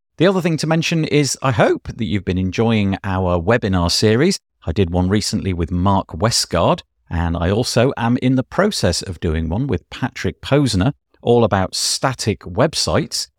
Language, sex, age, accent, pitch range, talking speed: English, male, 50-69, British, 90-145 Hz, 175 wpm